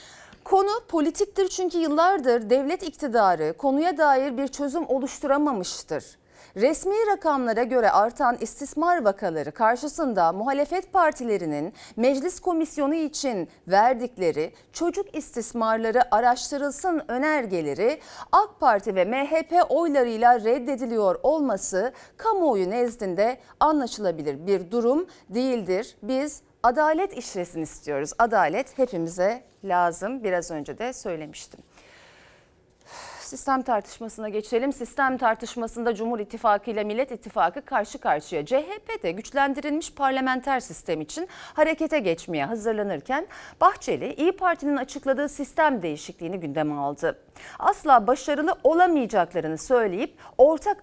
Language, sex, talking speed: Turkish, female, 100 wpm